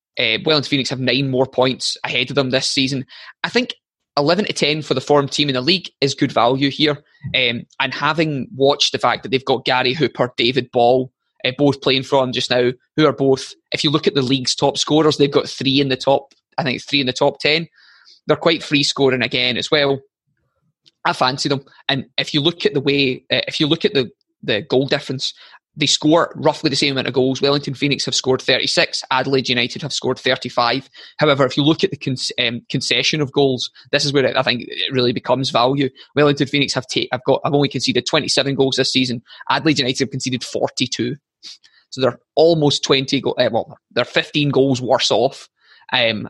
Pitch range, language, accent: 130-145 Hz, English, British